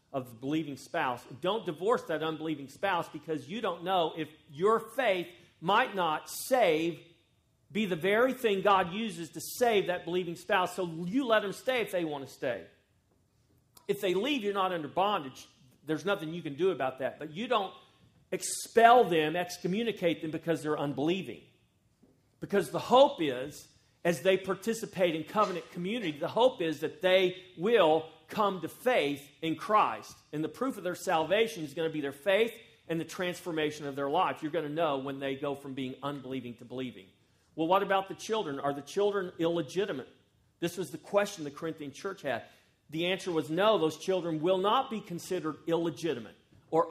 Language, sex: English, male